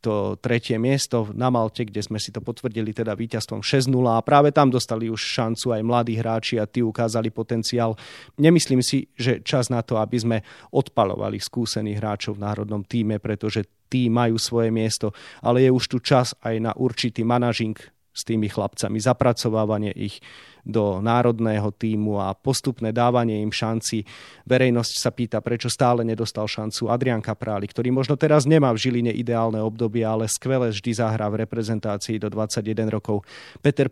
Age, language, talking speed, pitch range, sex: 30-49, Slovak, 165 wpm, 110-120 Hz, male